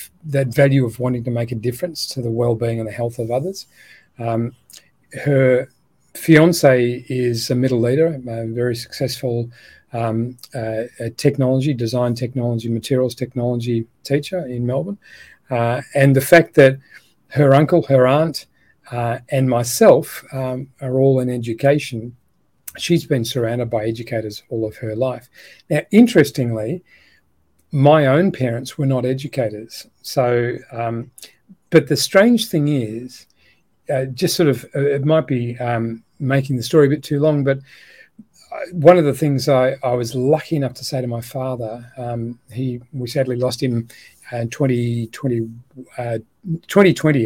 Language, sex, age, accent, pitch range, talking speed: English, male, 40-59, Australian, 115-140 Hz, 150 wpm